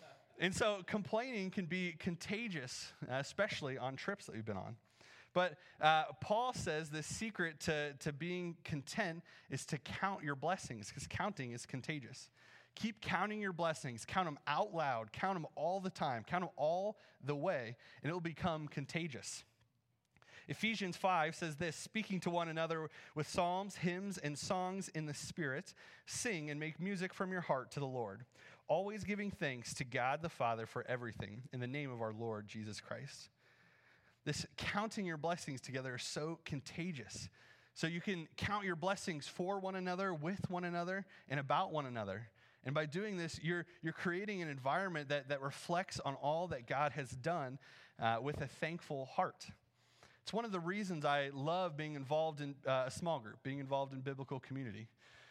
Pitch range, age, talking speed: 135-180 Hz, 30-49, 180 wpm